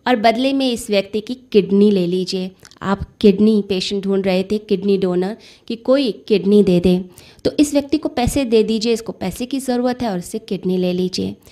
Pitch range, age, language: 190-240 Hz, 20-39, Hindi